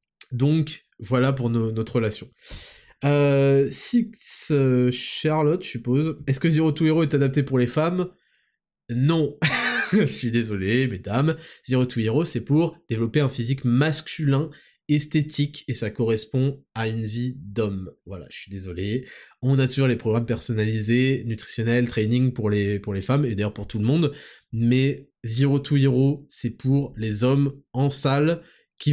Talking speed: 160 wpm